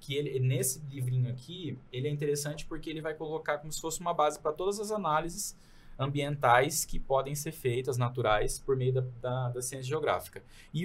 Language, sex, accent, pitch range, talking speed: Portuguese, male, Brazilian, 120-150 Hz, 195 wpm